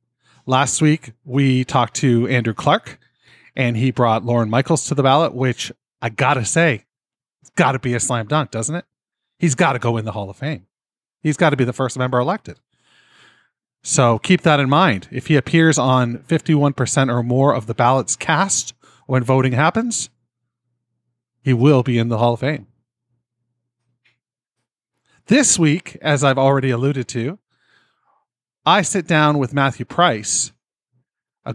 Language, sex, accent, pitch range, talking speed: English, male, American, 120-155 Hz, 165 wpm